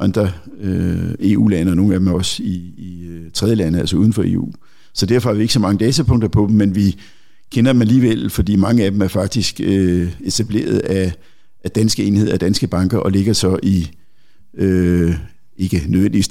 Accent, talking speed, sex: native, 200 wpm, male